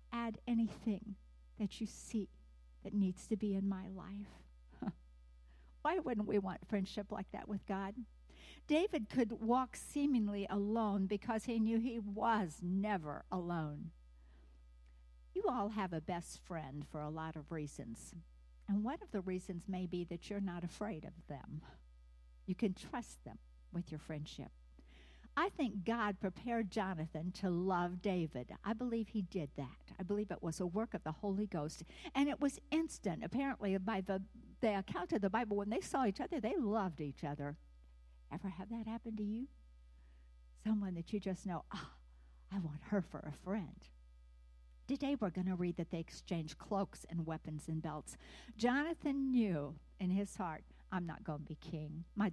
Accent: American